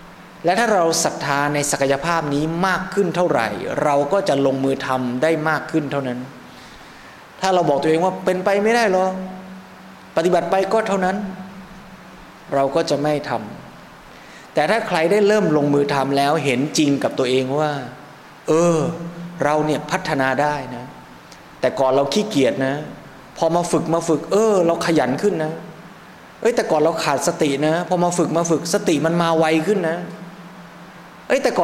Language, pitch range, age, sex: Thai, 145-180 Hz, 20-39, male